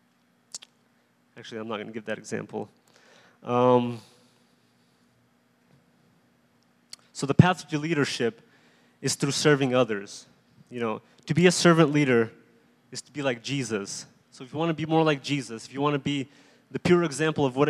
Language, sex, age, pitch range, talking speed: English, male, 20-39, 115-140 Hz, 165 wpm